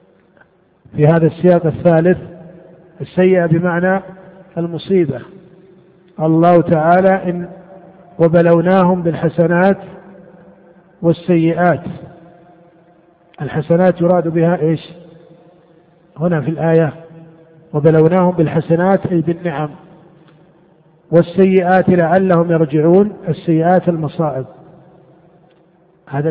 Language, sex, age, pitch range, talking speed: Arabic, male, 50-69, 160-180 Hz, 70 wpm